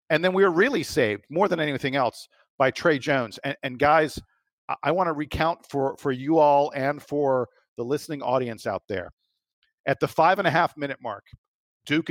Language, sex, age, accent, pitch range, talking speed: English, male, 50-69, American, 135-160 Hz, 180 wpm